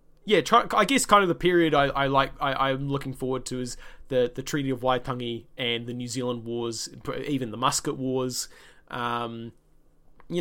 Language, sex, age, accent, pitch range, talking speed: English, male, 20-39, Australian, 125-160 Hz, 185 wpm